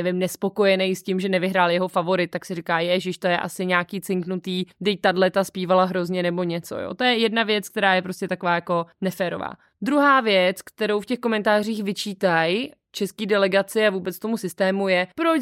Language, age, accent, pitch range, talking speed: Czech, 20-39, native, 185-240 Hz, 185 wpm